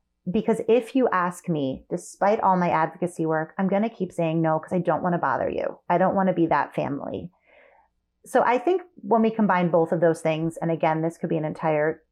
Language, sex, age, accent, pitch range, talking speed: English, female, 30-49, American, 165-205 Hz, 235 wpm